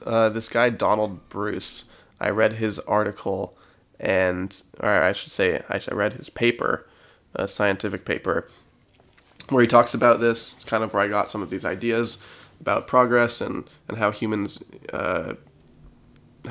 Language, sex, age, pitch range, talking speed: English, male, 20-39, 105-120 Hz, 155 wpm